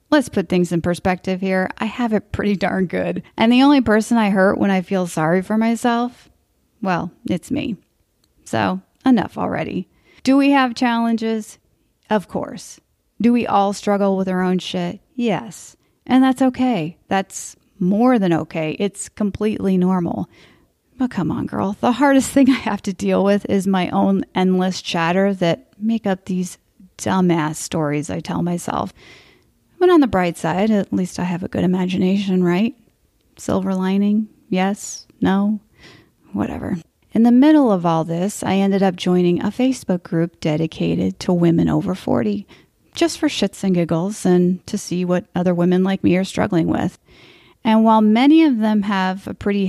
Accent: American